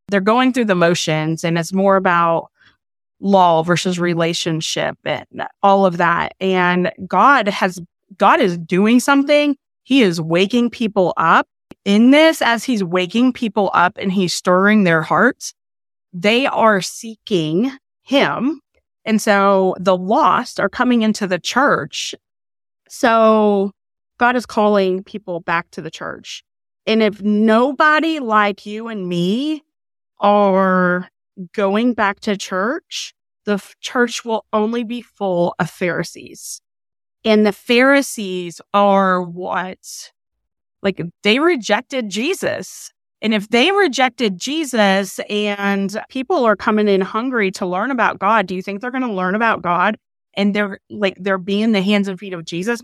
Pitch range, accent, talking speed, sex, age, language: 185-230 Hz, American, 145 wpm, female, 20-39, English